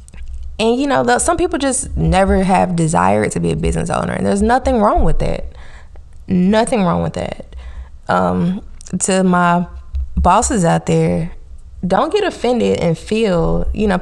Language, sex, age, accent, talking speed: English, female, 20-39, American, 160 wpm